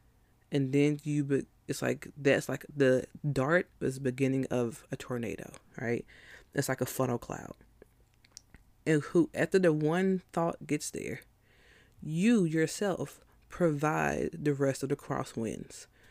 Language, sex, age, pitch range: English, female, 20-39, 130-170 Hz